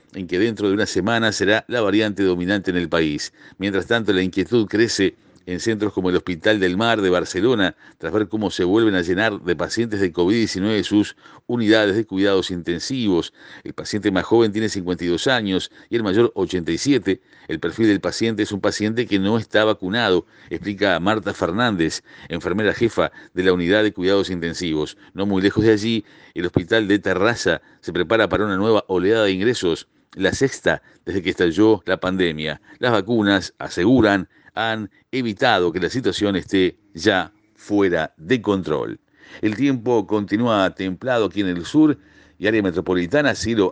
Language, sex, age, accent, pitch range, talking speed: Spanish, male, 50-69, Argentinian, 90-115 Hz, 170 wpm